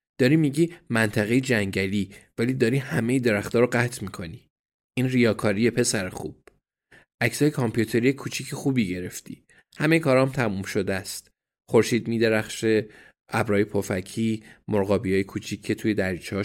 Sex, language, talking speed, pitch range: male, Persian, 140 wpm, 100-125 Hz